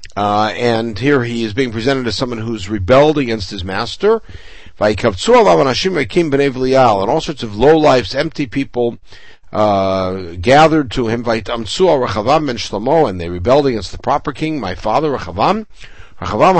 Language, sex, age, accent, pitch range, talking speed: English, male, 60-79, American, 100-145 Hz, 140 wpm